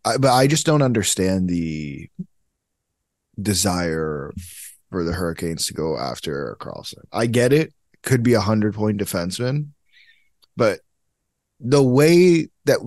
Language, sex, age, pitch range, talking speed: English, male, 20-39, 95-125 Hz, 120 wpm